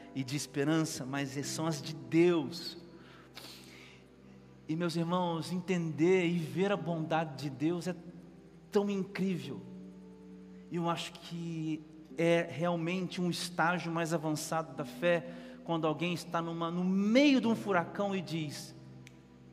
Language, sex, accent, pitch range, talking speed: Portuguese, male, Brazilian, 135-170 Hz, 130 wpm